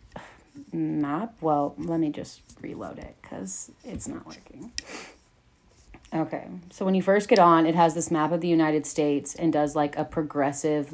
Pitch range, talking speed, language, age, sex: 150-170 Hz, 170 wpm, English, 30-49, female